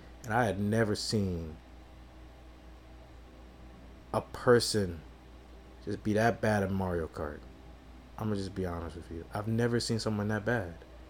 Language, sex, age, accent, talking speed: English, male, 30-49, American, 150 wpm